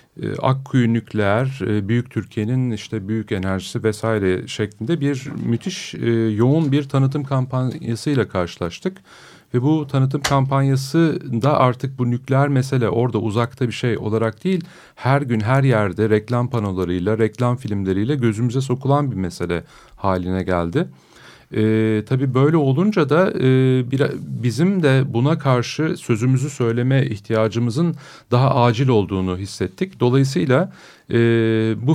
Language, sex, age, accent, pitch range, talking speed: Turkish, male, 40-59, native, 110-135 Hz, 125 wpm